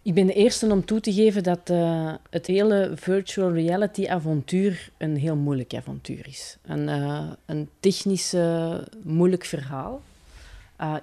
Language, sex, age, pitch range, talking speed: Dutch, female, 40-59, 145-185 Hz, 145 wpm